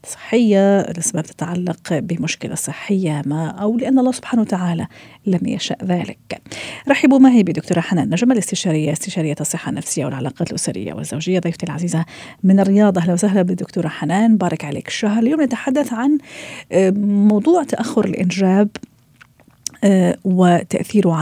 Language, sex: Arabic, female